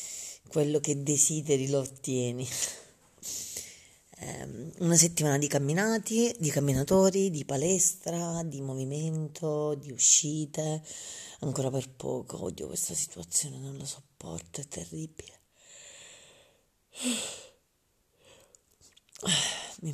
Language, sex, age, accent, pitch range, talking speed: Italian, female, 40-59, native, 125-165 Hz, 85 wpm